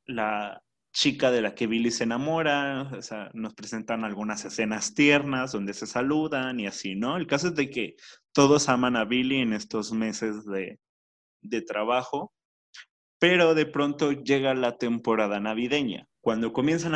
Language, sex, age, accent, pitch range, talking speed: Spanish, male, 30-49, Mexican, 110-135 Hz, 160 wpm